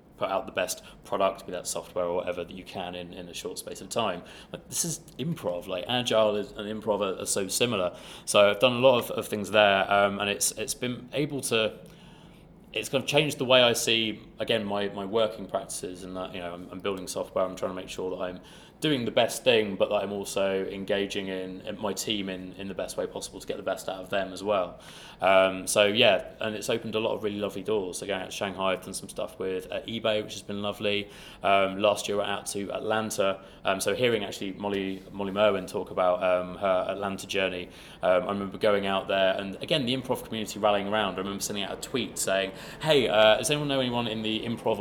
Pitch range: 95-115 Hz